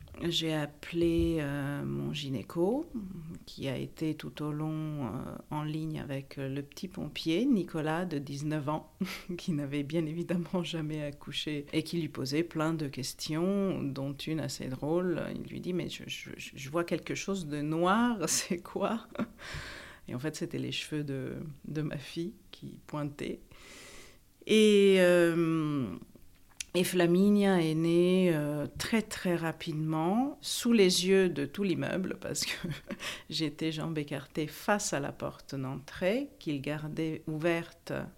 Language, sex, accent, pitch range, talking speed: French, female, French, 150-185 Hz, 150 wpm